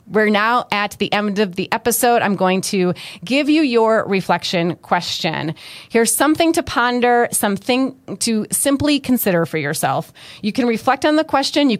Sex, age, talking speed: female, 30-49, 170 wpm